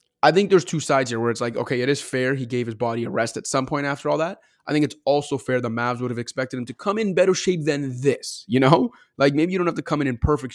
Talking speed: 315 wpm